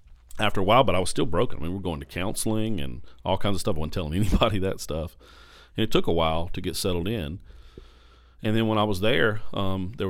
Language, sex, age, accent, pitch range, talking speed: English, male, 40-59, American, 80-95 Hz, 255 wpm